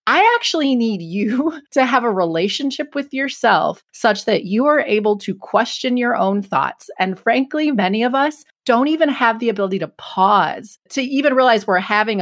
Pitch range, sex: 190-255 Hz, female